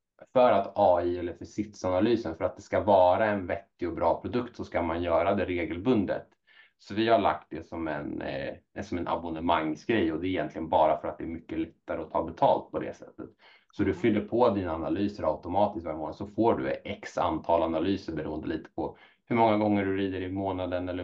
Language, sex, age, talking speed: English, male, 30-49, 210 wpm